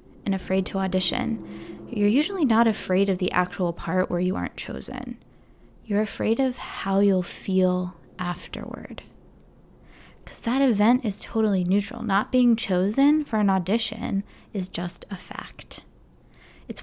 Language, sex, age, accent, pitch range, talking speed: English, female, 20-39, American, 185-230 Hz, 145 wpm